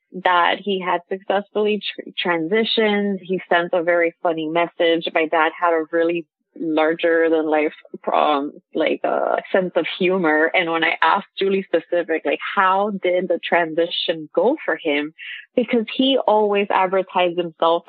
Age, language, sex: 20-39, English, female